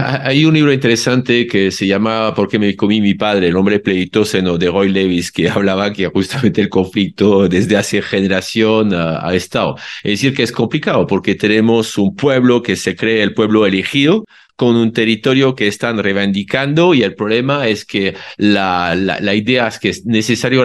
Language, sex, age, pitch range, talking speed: Spanish, male, 50-69, 100-125 Hz, 185 wpm